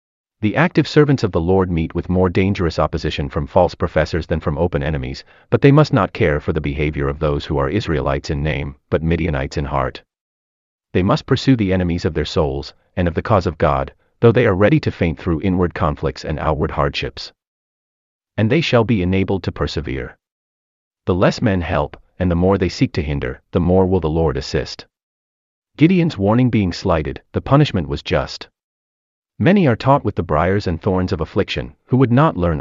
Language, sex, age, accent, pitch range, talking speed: English, male, 30-49, American, 75-110 Hz, 200 wpm